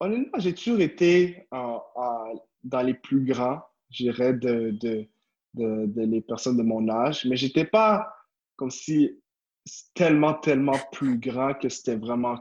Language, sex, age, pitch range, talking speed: French, male, 20-39, 120-155 Hz, 160 wpm